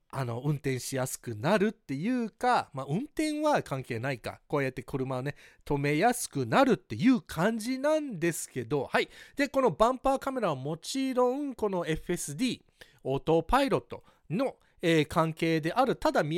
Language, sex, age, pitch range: Japanese, male, 40-59, 145-235 Hz